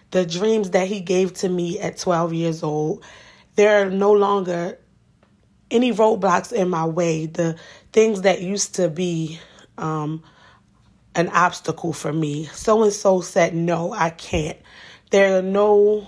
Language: English